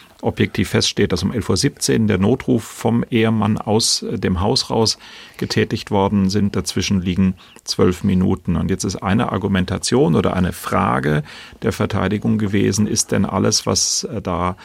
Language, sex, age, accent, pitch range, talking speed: German, male, 40-59, German, 90-110 Hz, 150 wpm